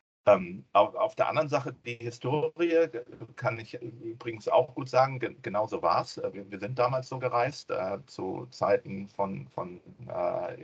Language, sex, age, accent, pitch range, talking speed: German, male, 50-69, German, 100-130 Hz, 150 wpm